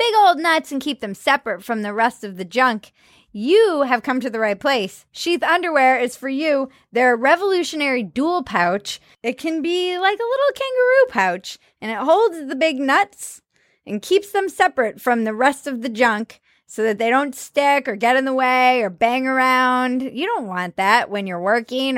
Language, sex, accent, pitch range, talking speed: English, female, American, 220-305 Hz, 200 wpm